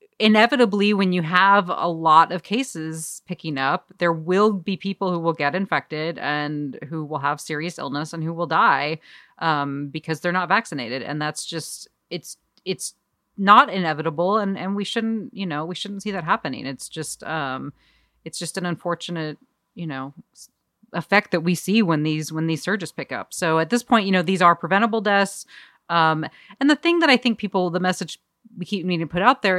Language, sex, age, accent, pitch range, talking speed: English, female, 30-49, American, 155-195 Hz, 200 wpm